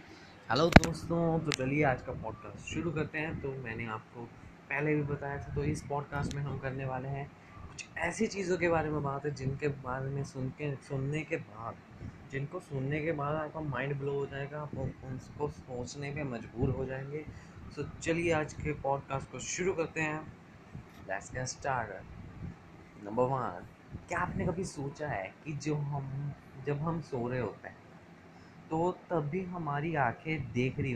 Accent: native